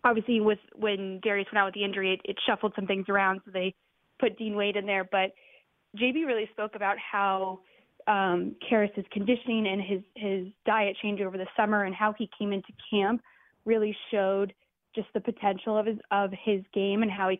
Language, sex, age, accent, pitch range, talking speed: English, female, 20-39, American, 195-225 Hz, 195 wpm